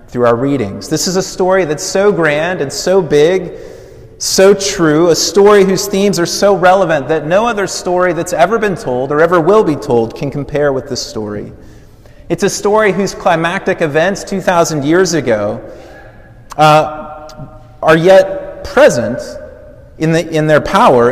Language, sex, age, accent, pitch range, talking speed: English, male, 30-49, American, 125-185 Hz, 160 wpm